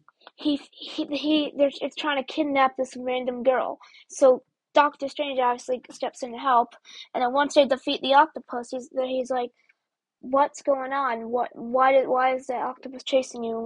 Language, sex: English, female